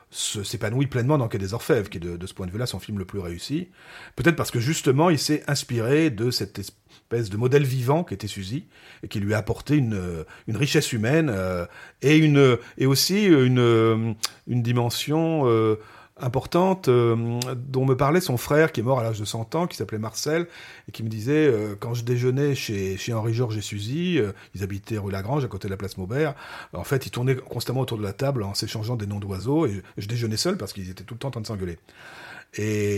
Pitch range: 105-140 Hz